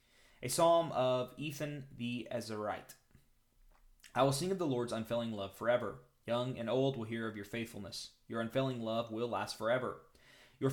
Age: 20-39